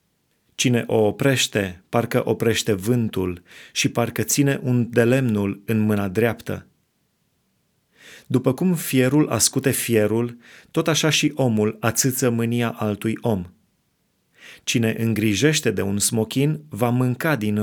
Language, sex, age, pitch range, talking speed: Romanian, male, 30-49, 110-135 Hz, 120 wpm